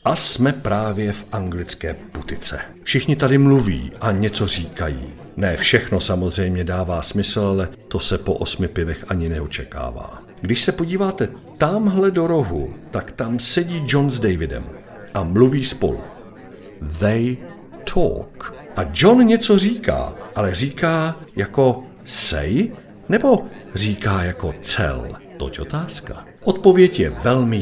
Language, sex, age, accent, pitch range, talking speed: Czech, male, 50-69, native, 90-145 Hz, 130 wpm